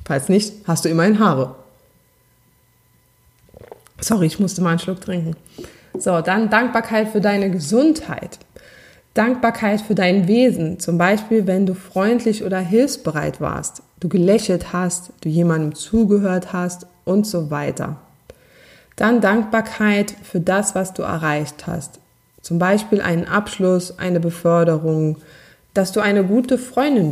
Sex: female